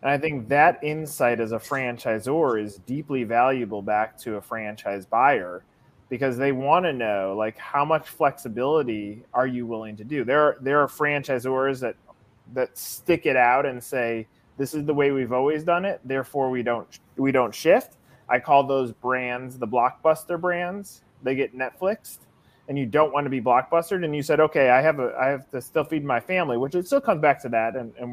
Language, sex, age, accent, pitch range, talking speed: English, male, 30-49, American, 120-150 Hz, 205 wpm